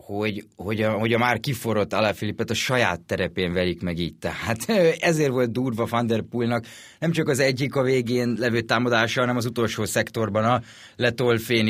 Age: 30-49